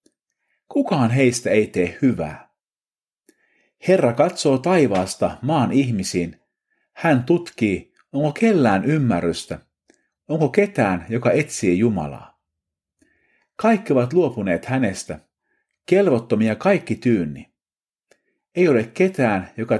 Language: Finnish